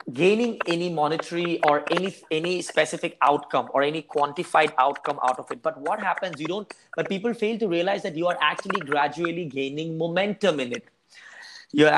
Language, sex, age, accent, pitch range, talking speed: English, male, 20-39, Indian, 145-185 Hz, 175 wpm